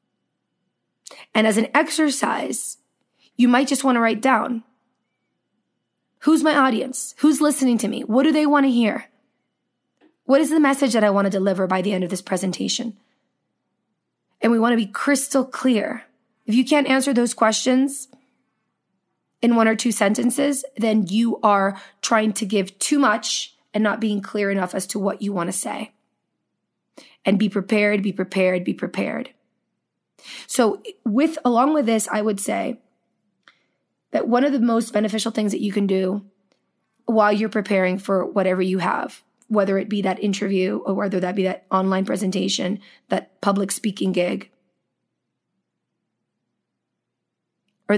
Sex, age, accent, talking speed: female, 20-39, American, 160 wpm